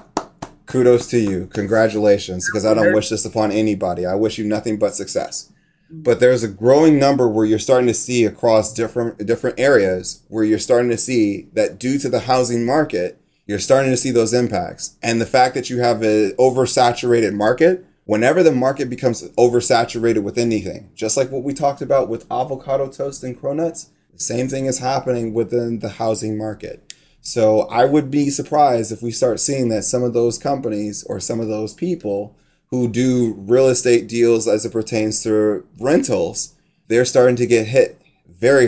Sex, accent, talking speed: male, American, 185 wpm